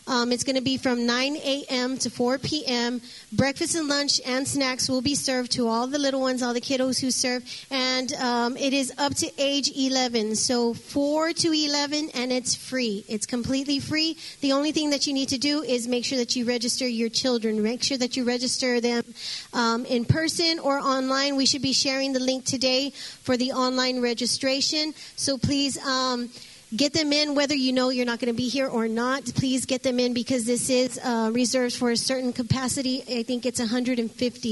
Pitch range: 240-265 Hz